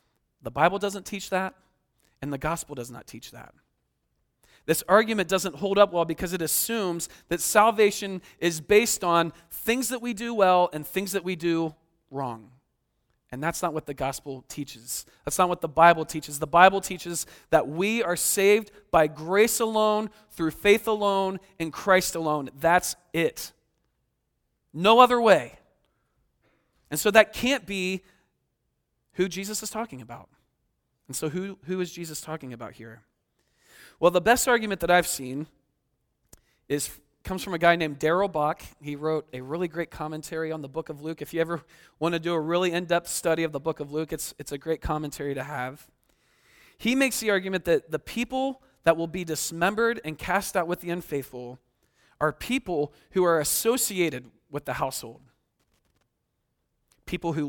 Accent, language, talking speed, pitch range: American, English, 170 wpm, 150-195 Hz